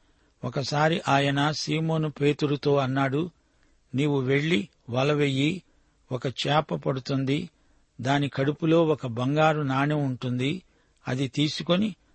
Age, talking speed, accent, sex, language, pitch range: 60-79, 95 wpm, native, male, Telugu, 135-160 Hz